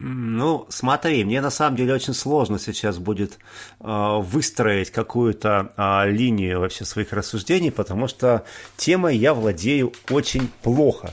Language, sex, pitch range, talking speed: Russian, male, 100-120 Hz, 125 wpm